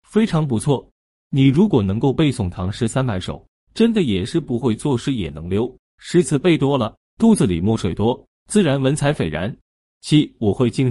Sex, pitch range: male, 100-155 Hz